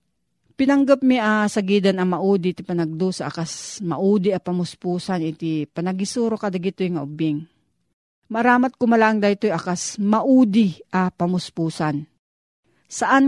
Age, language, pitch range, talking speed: 40-59, Filipino, 175-220 Hz, 115 wpm